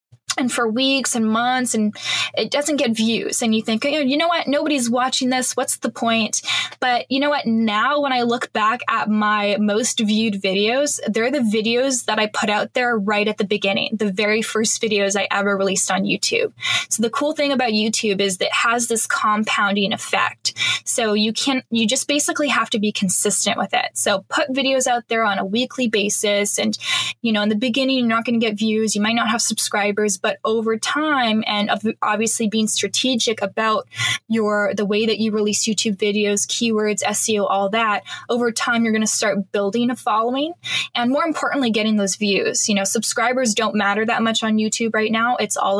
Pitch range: 210-250 Hz